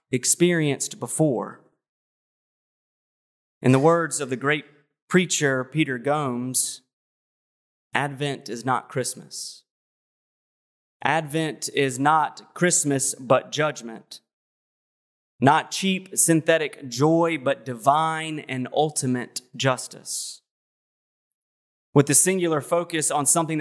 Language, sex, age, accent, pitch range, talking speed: English, male, 30-49, American, 130-160 Hz, 90 wpm